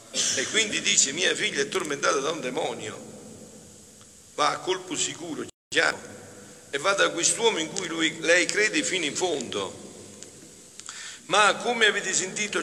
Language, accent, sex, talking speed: Italian, native, male, 145 wpm